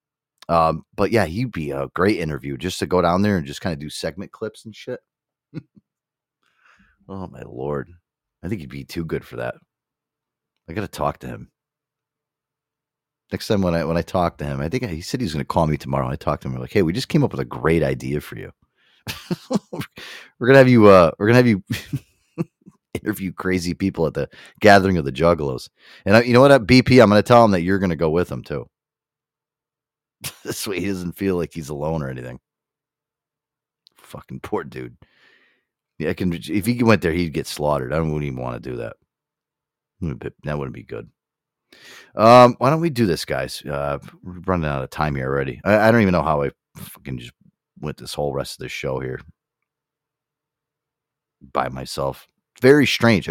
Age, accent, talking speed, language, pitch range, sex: 30-49, American, 210 wpm, English, 75-120 Hz, male